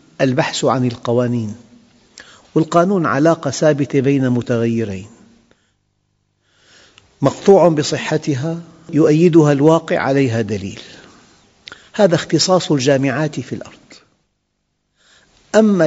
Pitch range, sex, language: 120-155 Hz, male, Arabic